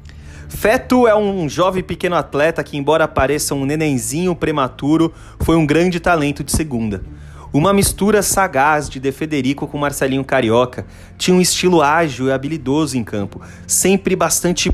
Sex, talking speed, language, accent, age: male, 150 wpm, Portuguese, Brazilian, 30-49